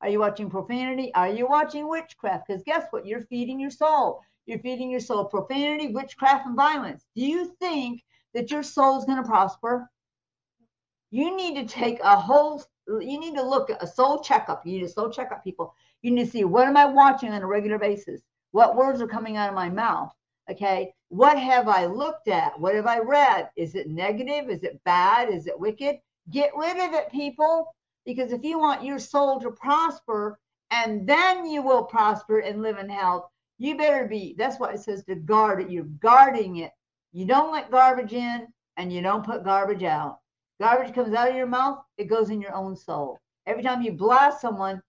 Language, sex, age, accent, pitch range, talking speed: English, female, 50-69, American, 200-275 Hz, 205 wpm